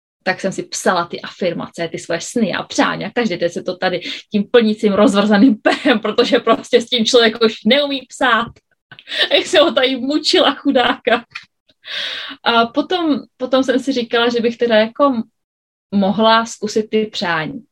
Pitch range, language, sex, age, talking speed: 195-255 Hz, Czech, female, 20-39, 170 wpm